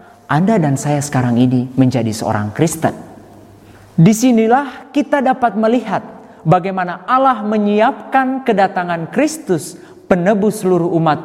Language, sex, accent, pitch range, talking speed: Indonesian, male, native, 150-230 Hz, 105 wpm